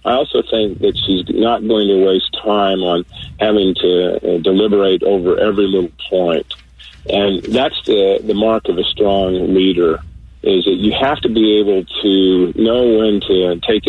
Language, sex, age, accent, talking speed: English, male, 40-59, American, 175 wpm